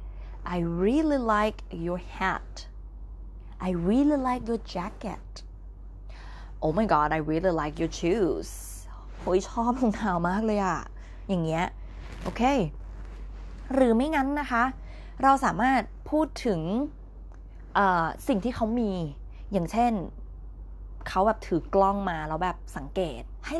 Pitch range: 155-225 Hz